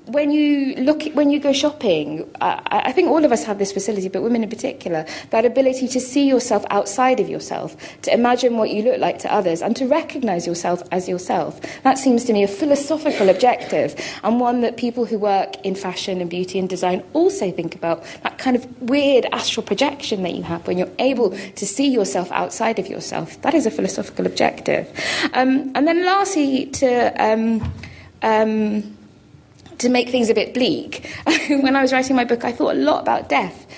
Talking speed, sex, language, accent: 200 wpm, female, English, British